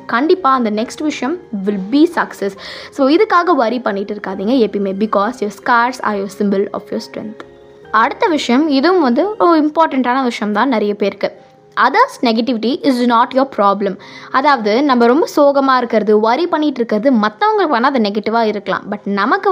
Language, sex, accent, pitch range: Tamil, female, native, 210-290 Hz